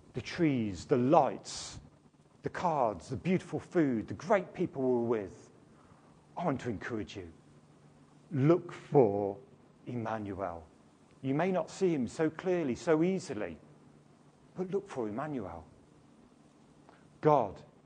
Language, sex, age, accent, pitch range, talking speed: English, male, 50-69, British, 115-170 Hz, 120 wpm